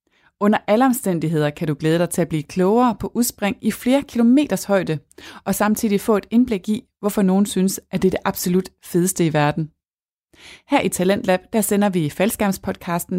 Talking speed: 185 wpm